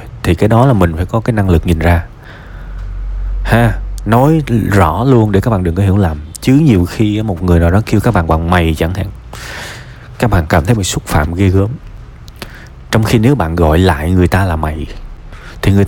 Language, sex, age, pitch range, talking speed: Vietnamese, male, 20-39, 90-120 Hz, 220 wpm